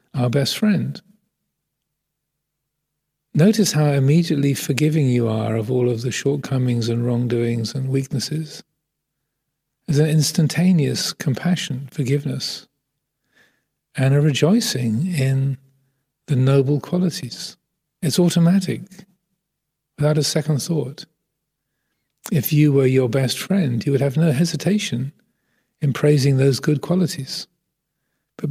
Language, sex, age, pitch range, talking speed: English, male, 40-59, 135-155 Hz, 110 wpm